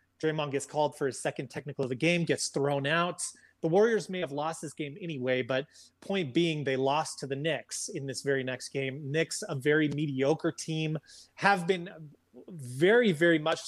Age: 30-49